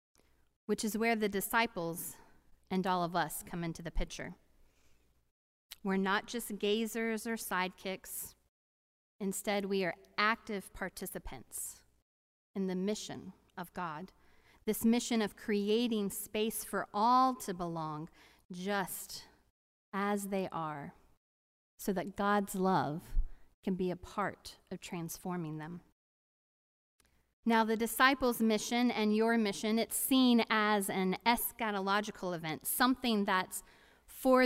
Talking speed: 120 wpm